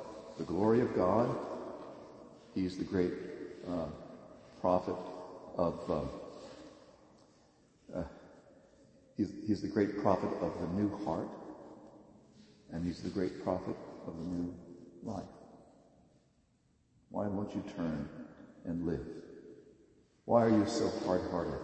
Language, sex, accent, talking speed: English, male, American, 115 wpm